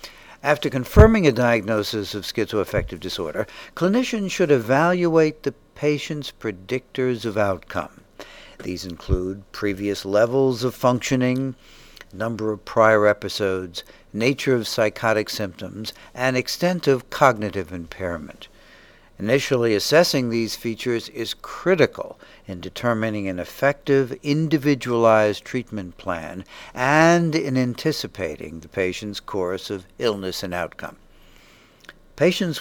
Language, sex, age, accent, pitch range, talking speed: English, male, 60-79, American, 100-135 Hz, 105 wpm